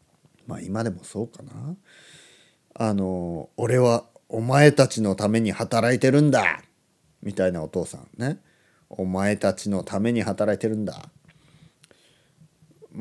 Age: 40-59